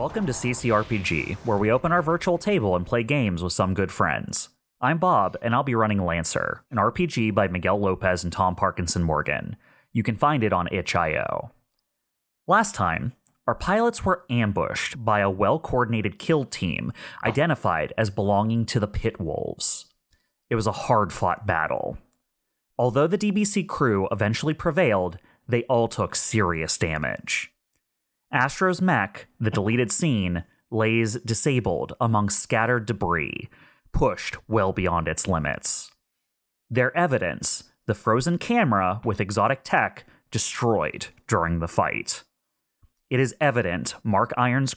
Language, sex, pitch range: English, male, 95-130 Hz